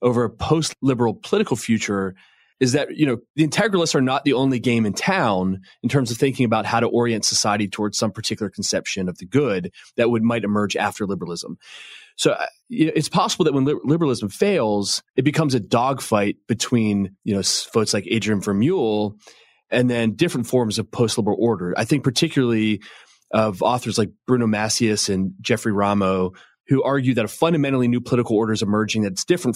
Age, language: 30-49, English